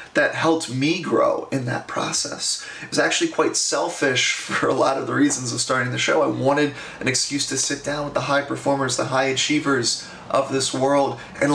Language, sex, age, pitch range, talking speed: English, male, 30-49, 125-145 Hz, 210 wpm